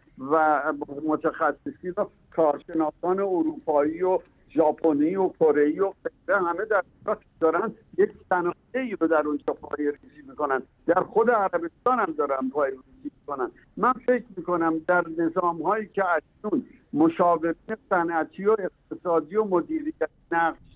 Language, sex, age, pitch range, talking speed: Persian, male, 60-79, 170-225 Hz, 125 wpm